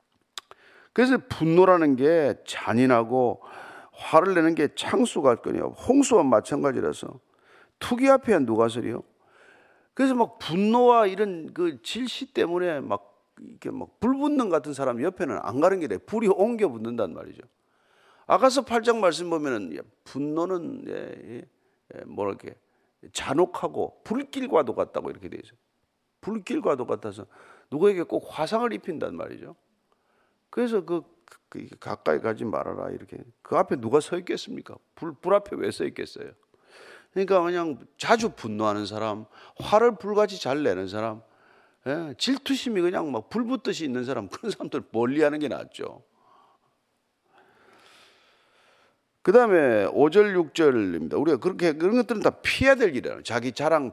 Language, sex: Korean, male